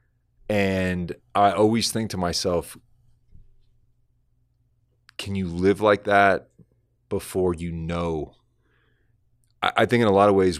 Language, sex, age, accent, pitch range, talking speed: English, male, 30-49, American, 85-110 Hz, 125 wpm